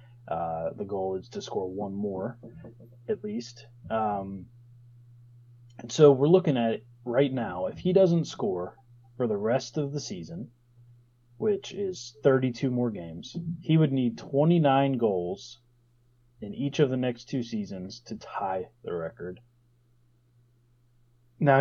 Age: 30-49